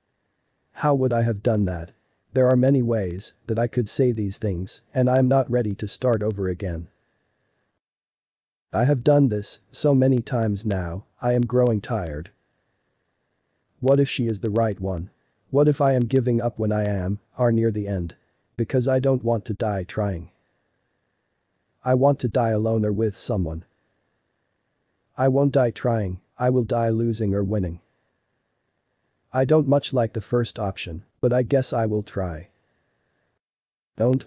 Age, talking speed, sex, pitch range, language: 40-59, 170 wpm, male, 100-125 Hz, English